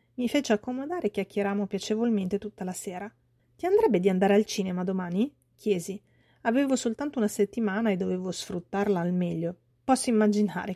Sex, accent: female, native